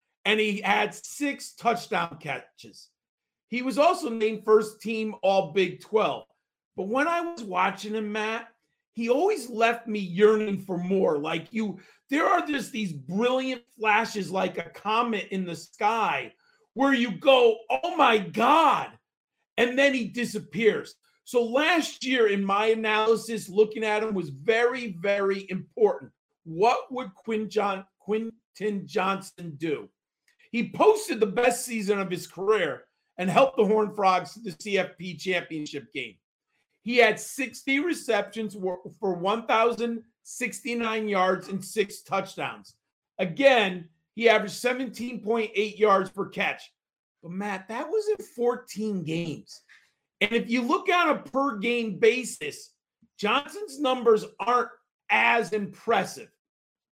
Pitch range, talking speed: 195-245 Hz, 135 wpm